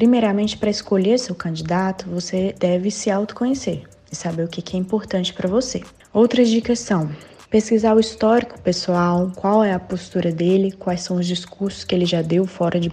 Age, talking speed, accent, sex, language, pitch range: 20-39, 180 wpm, Brazilian, female, Portuguese, 175-215 Hz